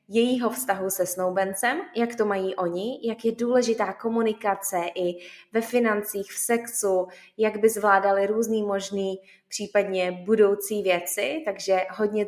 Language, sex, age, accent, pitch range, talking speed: Czech, female, 20-39, native, 185-225 Hz, 130 wpm